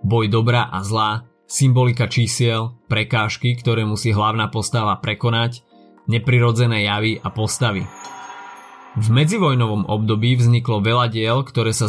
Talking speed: 120 wpm